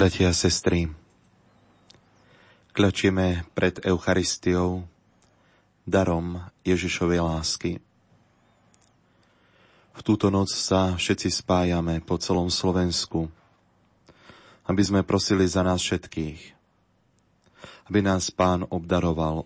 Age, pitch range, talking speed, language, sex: 30-49, 85-95 Hz, 85 wpm, Slovak, male